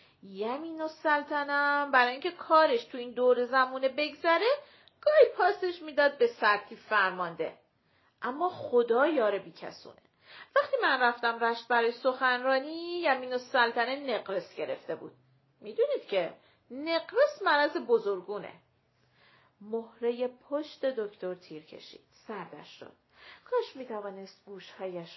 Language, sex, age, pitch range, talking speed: Persian, female, 40-59, 205-305 Hz, 110 wpm